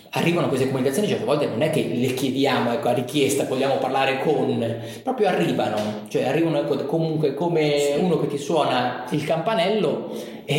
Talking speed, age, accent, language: 170 wpm, 30-49, native, Italian